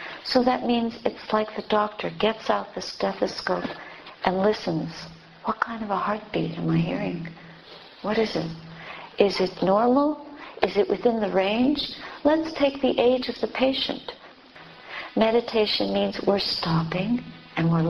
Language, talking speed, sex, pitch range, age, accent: English, 150 wpm, female, 190-250 Hz, 60-79, American